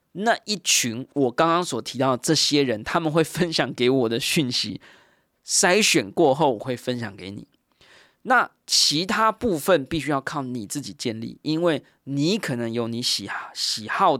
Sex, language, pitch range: male, Chinese, 120-155 Hz